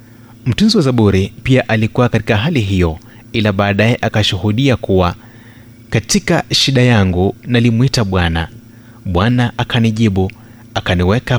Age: 30-49